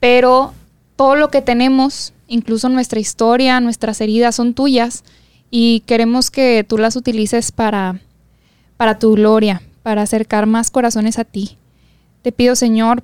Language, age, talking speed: Spanish, 10-29, 145 wpm